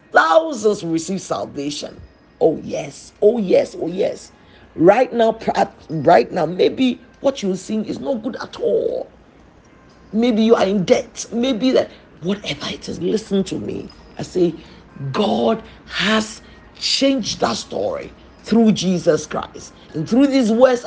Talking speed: 140 wpm